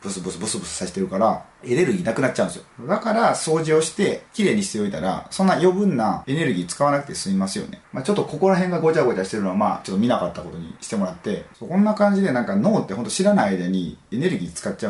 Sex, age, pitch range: male, 30-49, 125-200 Hz